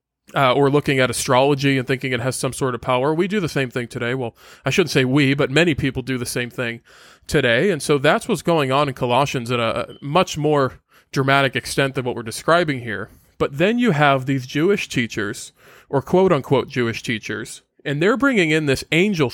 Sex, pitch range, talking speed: male, 130-160 Hz, 210 wpm